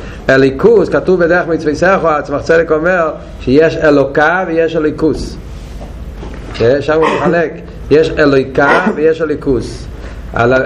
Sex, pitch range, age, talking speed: male, 120-190 Hz, 40-59, 115 wpm